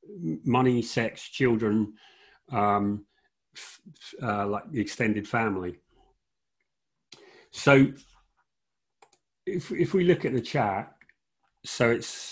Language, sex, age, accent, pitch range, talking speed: English, male, 40-59, British, 105-135 Hz, 100 wpm